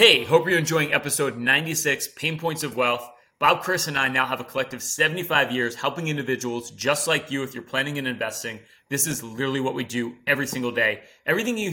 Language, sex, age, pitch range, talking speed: English, male, 30-49, 125-155 Hz, 210 wpm